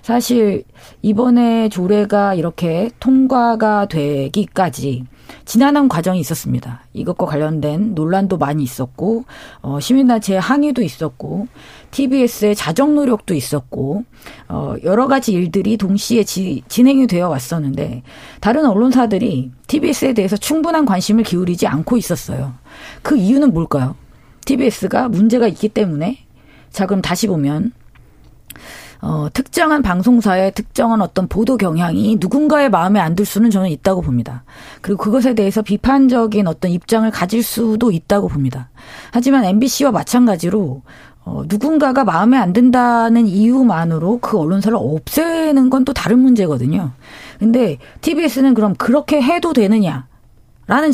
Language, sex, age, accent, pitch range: Korean, female, 40-59, native, 175-250 Hz